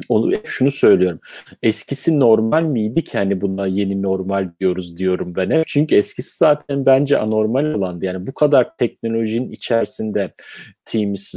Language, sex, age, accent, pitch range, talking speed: Turkish, male, 40-59, native, 95-110 Hz, 135 wpm